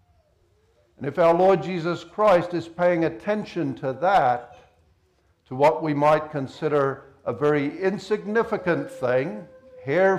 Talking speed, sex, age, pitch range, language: 125 wpm, male, 60-79, 95-155 Hz, English